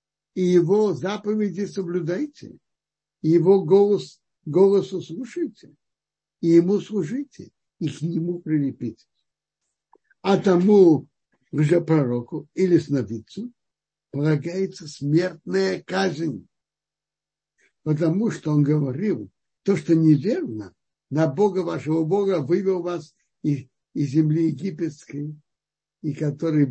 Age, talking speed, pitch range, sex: 60-79, 95 wpm, 140-185 Hz, male